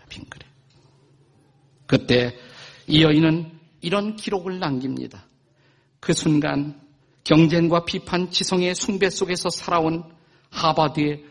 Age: 50-69